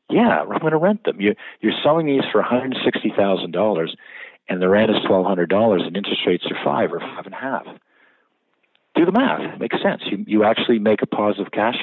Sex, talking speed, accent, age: male, 195 wpm, American, 50-69